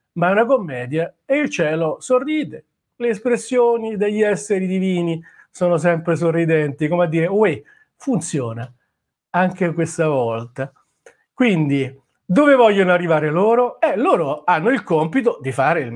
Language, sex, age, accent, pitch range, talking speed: Italian, male, 40-59, native, 165-220 Hz, 140 wpm